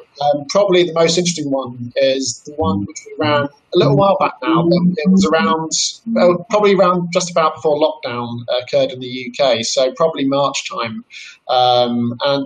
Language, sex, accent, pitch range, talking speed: English, male, British, 130-160 Hz, 180 wpm